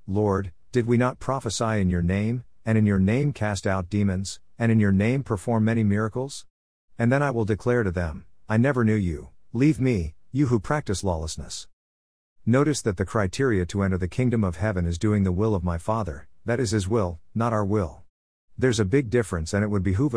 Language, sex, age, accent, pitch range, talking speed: English, male, 50-69, American, 90-115 Hz, 210 wpm